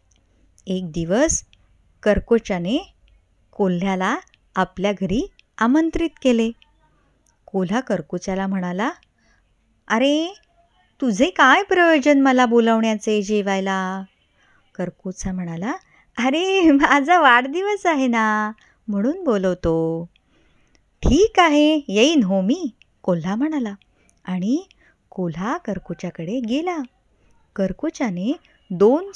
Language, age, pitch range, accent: Marathi, 20-39, 190-275 Hz, native